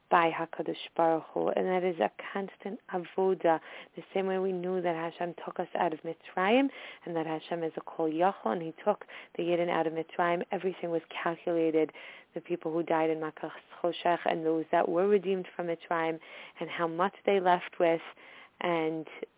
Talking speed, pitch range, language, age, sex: 185 wpm, 165-190 Hz, English, 30-49, female